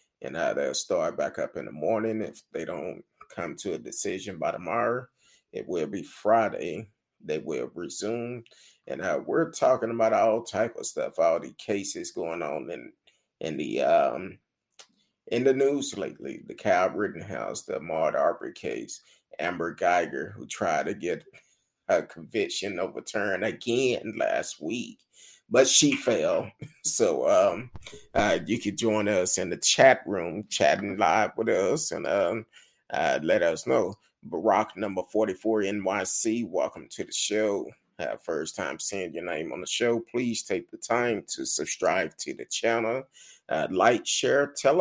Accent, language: American, English